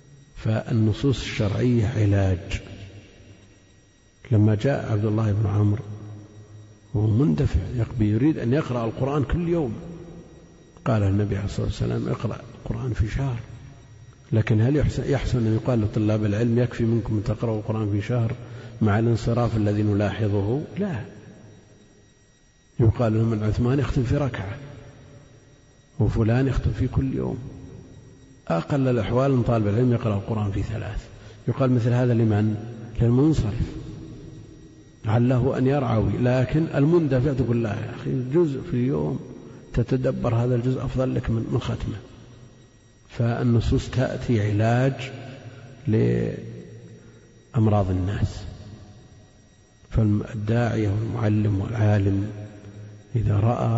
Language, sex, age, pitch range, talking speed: Arabic, male, 50-69, 105-130 Hz, 115 wpm